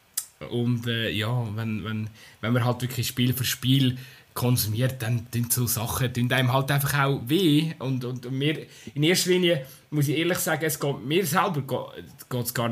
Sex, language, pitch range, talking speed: male, German, 115-140 Hz, 190 wpm